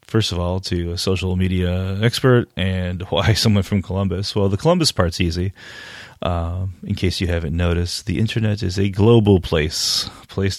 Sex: male